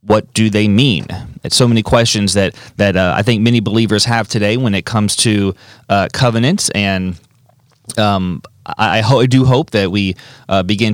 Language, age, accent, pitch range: English, 30-49, American, 100-120 Hz